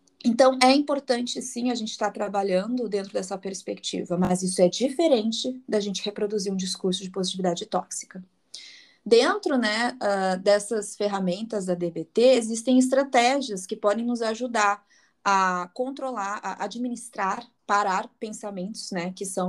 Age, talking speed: 20-39, 135 wpm